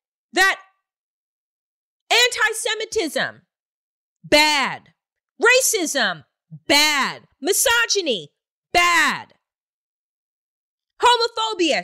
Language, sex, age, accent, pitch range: English, female, 30-49, American, 240-345 Hz